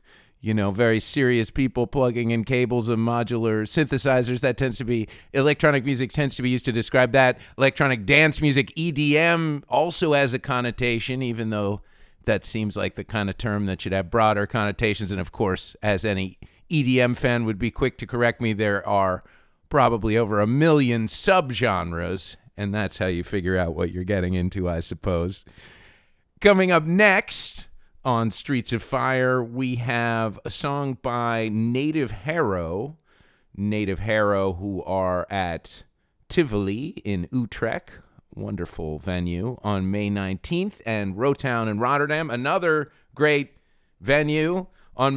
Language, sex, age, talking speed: English, male, 40-59, 150 wpm